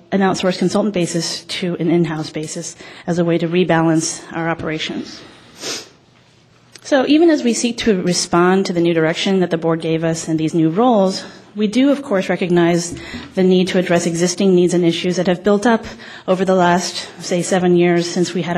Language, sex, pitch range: English, female, 170-195 Hz